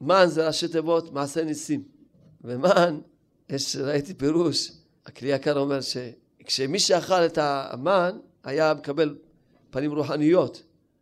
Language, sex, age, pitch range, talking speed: Hebrew, male, 40-59, 150-185 Hz, 115 wpm